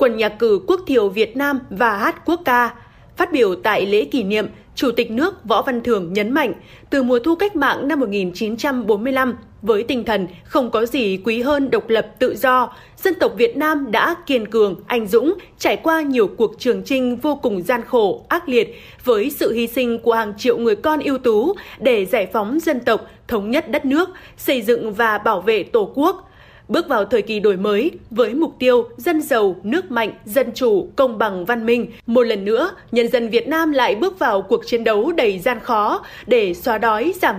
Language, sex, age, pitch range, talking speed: Vietnamese, female, 20-39, 230-315 Hz, 210 wpm